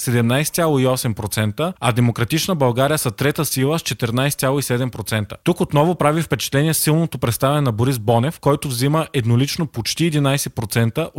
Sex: male